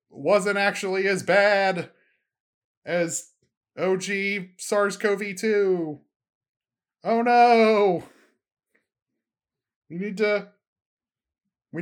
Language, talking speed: English, 65 wpm